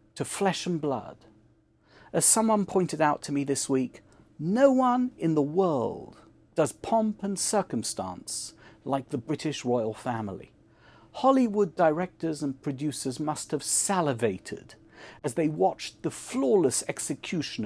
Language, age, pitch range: English, 50-69, 125-190 Hz